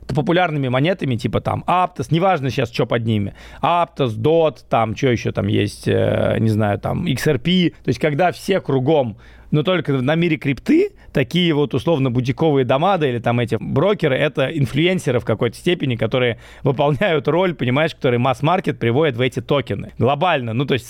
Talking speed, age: 175 wpm, 30-49